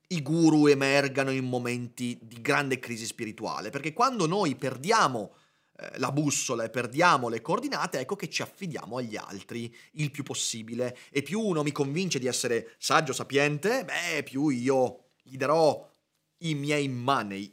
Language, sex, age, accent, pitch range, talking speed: Italian, male, 30-49, native, 125-185 Hz, 160 wpm